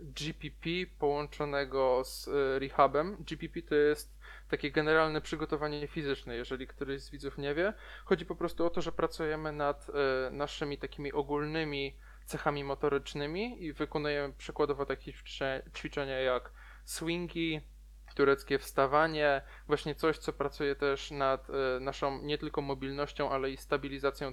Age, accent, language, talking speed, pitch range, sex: 20-39, native, Polish, 130 wpm, 140-155 Hz, male